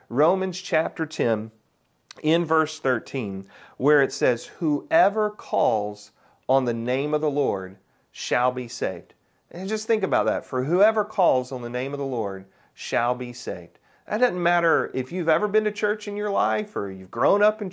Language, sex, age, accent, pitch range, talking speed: English, male, 40-59, American, 120-185 Hz, 185 wpm